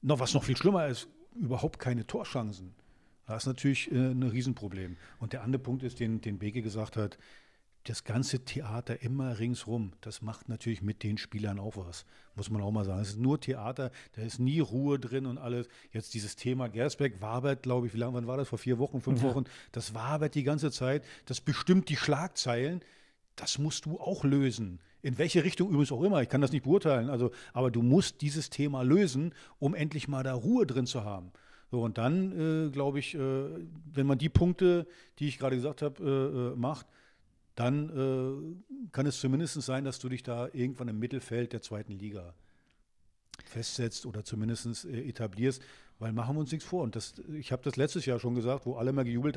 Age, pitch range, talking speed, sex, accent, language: 50-69, 115-145 Hz, 205 wpm, male, German, German